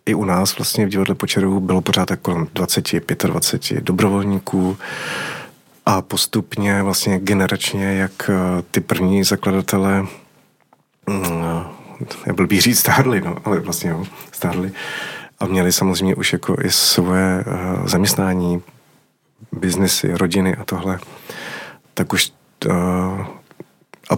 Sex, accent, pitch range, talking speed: male, native, 90-100 Hz, 115 wpm